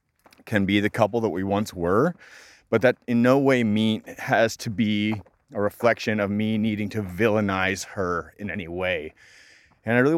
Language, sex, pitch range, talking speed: English, male, 105-125 Hz, 175 wpm